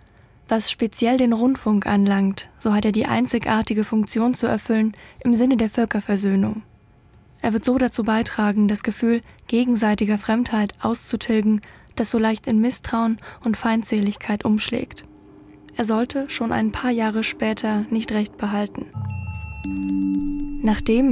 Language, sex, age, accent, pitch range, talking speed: German, female, 10-29, German, 215-235 Hz, 130 wpm